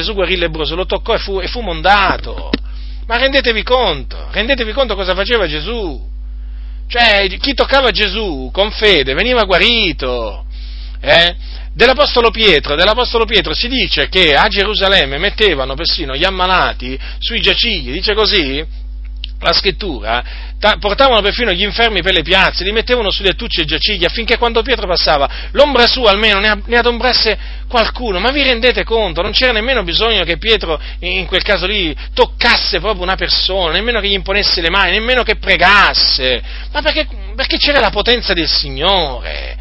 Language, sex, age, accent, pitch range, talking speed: Italian, male, 40-59, native, 165-235 Hz, 160 wpm